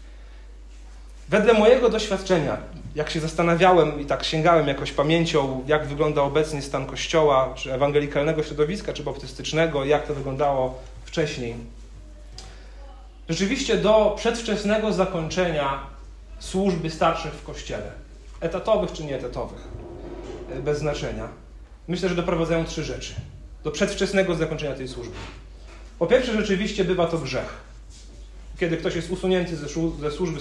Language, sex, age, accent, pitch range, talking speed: Polish, male, 40-59, native, 130-175 Hz, 120 wpm